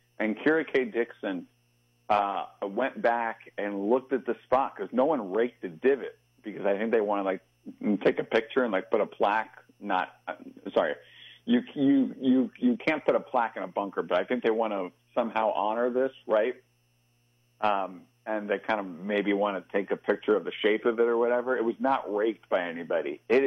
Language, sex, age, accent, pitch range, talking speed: English, male, 50-69, American, 90-125 Hz, 200 wpm